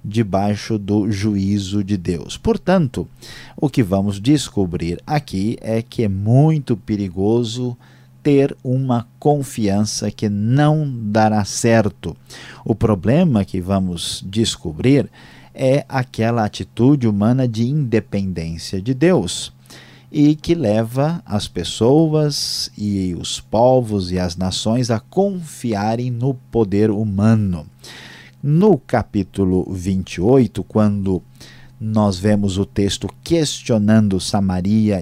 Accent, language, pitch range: Brazilian, Portuguese, 95-125 Hz